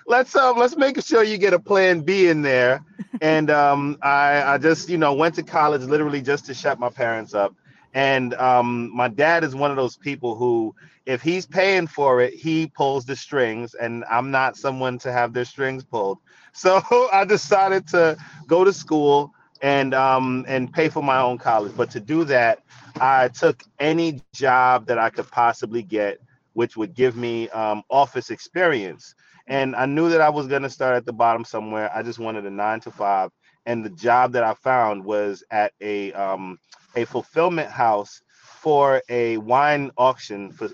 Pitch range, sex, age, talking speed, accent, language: 120-150 Hz, male, 30-49, 190 wpm, American, English